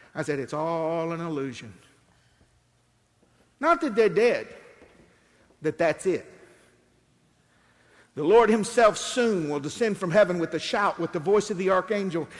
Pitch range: 175-235 Hz